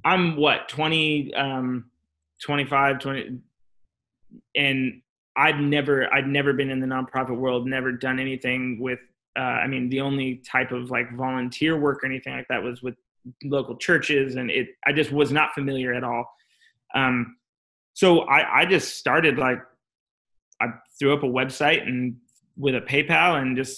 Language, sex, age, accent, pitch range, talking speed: English, male, 20-39, American, 130-150 Hz, 165 wpm